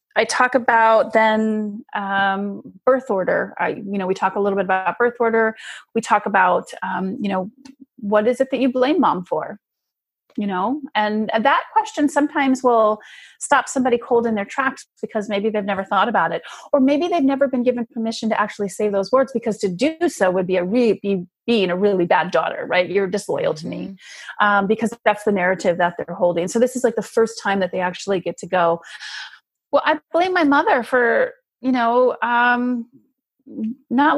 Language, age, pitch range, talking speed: English, 30-49, 200-260 Hz, 210 wpm